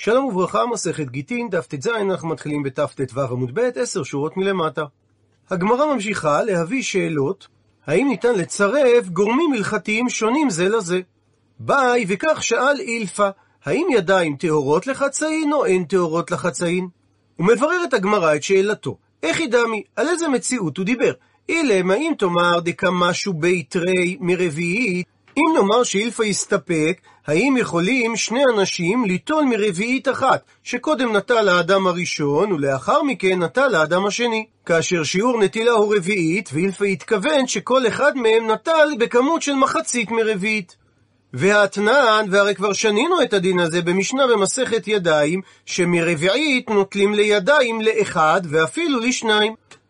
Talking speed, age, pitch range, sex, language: 130 wpm, 40-59, 175-235 Hz, male, Hebrew